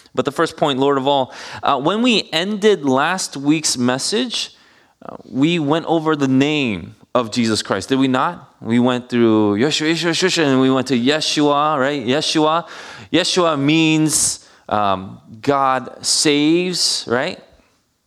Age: 20-39